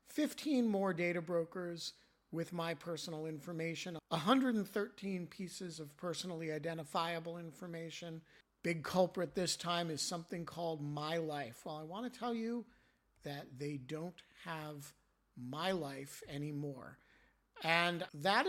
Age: 50-69